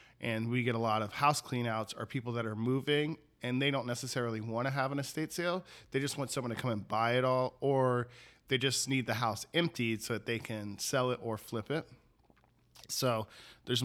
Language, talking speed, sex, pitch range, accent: English, 220 wpm, male, 115-130 Hz, American